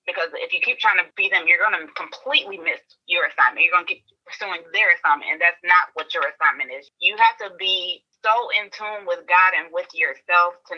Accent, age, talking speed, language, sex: American, 20-39, 235 wpm, English, female